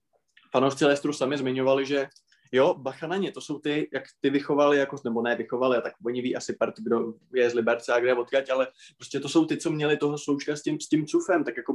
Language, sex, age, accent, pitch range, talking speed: Czech, male, 20-39, native, 125-145 Hz, 220 wpm